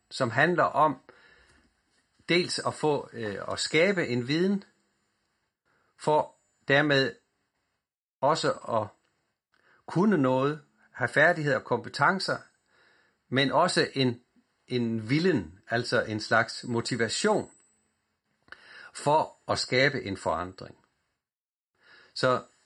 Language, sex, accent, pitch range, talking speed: Danish, male, native, 115-150 Hz, 95 wpm